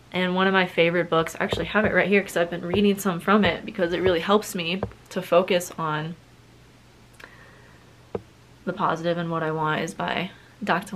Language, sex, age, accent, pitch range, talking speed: English, female, 20-39, American, 160-185 Hz, 195 wpm